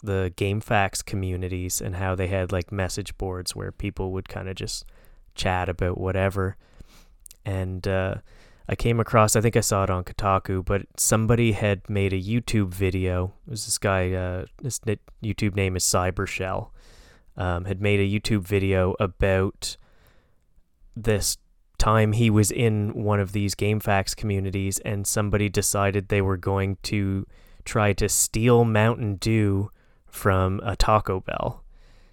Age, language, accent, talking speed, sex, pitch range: 20-39, English, American, 150 wpm, male, 95-110 Hz